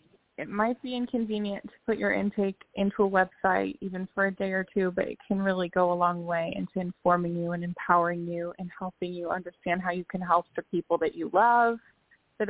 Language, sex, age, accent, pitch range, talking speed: English, female, 20-39, American, 175-205 Hz, 215 wpm